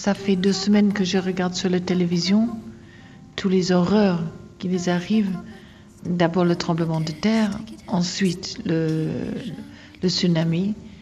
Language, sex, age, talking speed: French, female, 50-69, 135 wpm